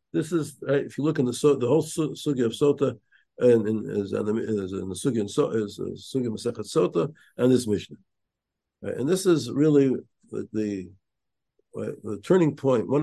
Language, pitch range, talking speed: English, 115-165 Hz, 130 wpm